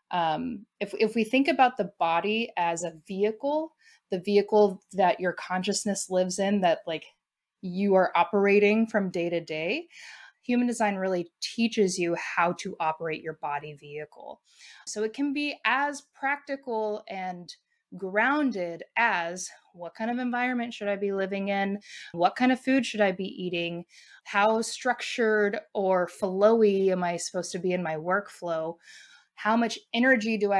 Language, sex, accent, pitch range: English, female, American, 180-230 Hz